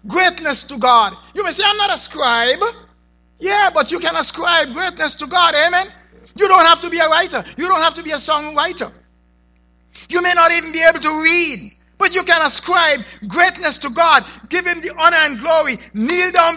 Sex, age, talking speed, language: male, 50-69, 205 wpm, English